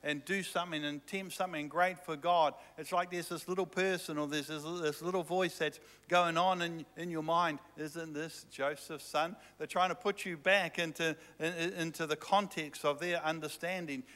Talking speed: 190 wpm